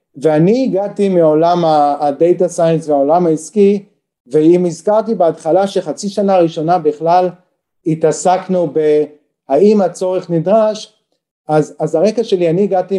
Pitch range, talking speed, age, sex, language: 155-190 Hz, 110 wpm, 40-59, male, Hebrew